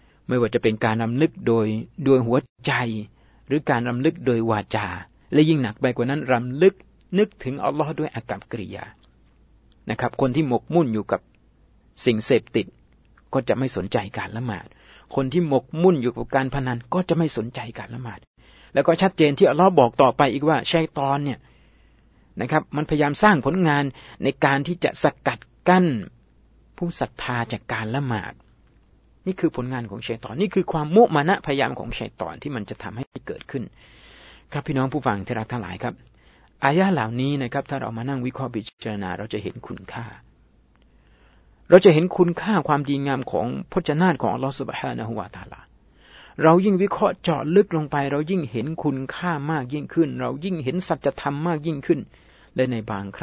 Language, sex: Thai, male